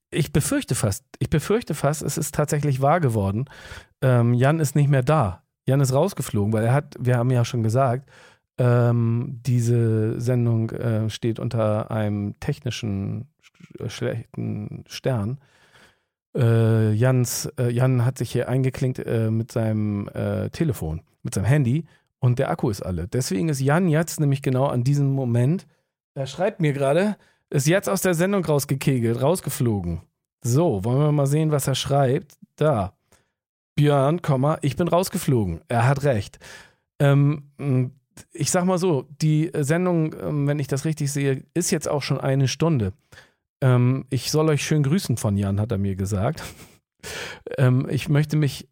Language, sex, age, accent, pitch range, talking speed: German, male, 40-59, German, 120-155 Hz, 160 wpm